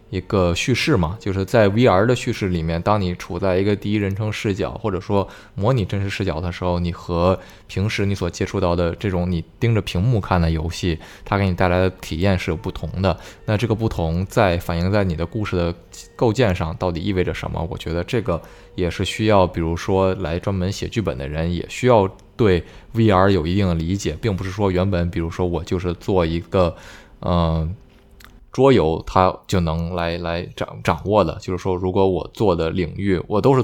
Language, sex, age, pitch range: Chinese, male, 20-39, 85-100 Hz